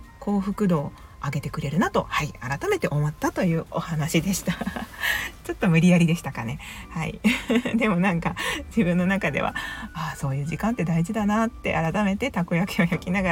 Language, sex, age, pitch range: Japanese, female, 40-59, 160-205 Hz